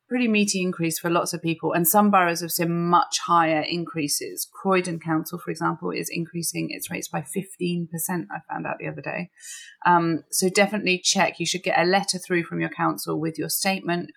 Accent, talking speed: British, 200 wpm